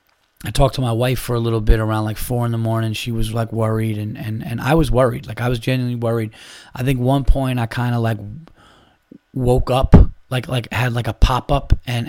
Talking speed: 235 wpm